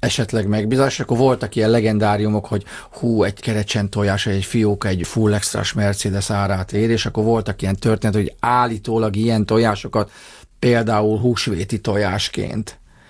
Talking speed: 140 wpm